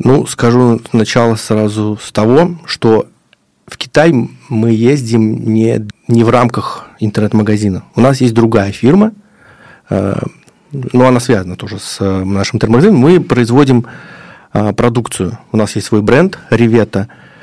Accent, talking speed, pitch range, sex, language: native, 140 wpm, 105-125 Hz, male, Russian